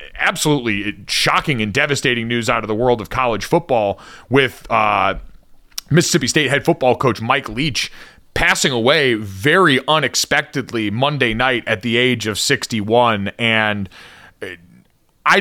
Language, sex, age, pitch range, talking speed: English, male, 30-49, 120-145 Hz, 130 wpm